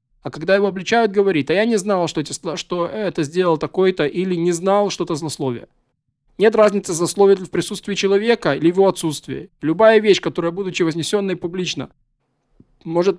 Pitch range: 155-200 Hz